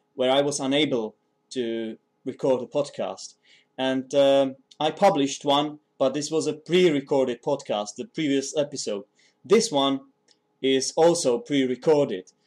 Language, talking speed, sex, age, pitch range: English, 130 wpm, male, 30-49, 125-155 Hz